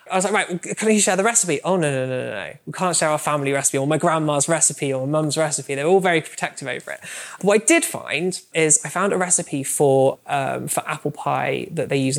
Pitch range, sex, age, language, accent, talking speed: 135-165 Hz, male, 20-39, English, British, 250 wpm